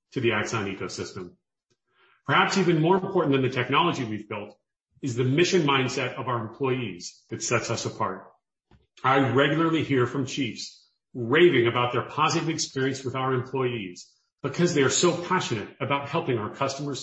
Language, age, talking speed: English, 40-59, 160 wpm